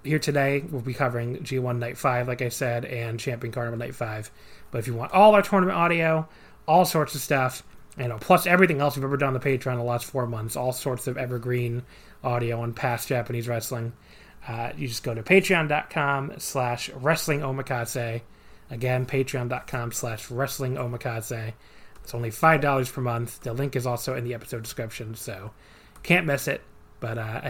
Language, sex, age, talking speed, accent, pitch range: English, male, 30-49, 190 wpm, American, 120-145 Hz